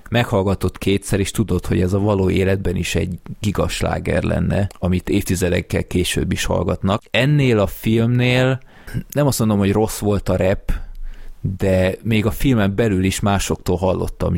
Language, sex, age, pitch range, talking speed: Hungarian, male, 20-39, 90-100 Hz, 155 wpm